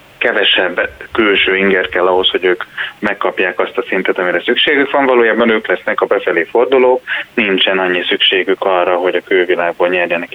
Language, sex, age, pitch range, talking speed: Hungarian, male, 20-39, 95-130 Hz, 160 wpm